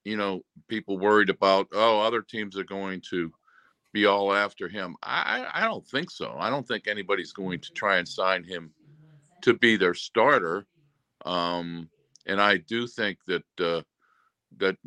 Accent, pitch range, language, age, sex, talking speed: American, 95-125 Hz, English, 50-69, male, 170 wpm